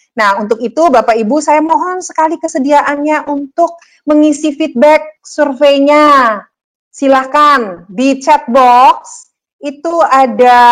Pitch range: 210-275 Hz